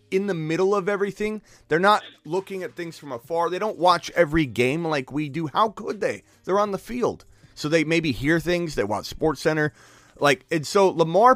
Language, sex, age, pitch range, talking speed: English, male, 30-49, 130-195 Hz, 210 wpm